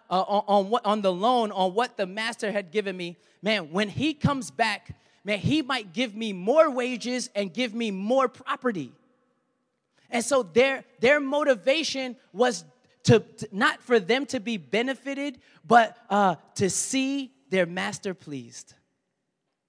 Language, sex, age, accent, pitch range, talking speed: English, male, 20-39, American, 195-260 Hz, 160 wpm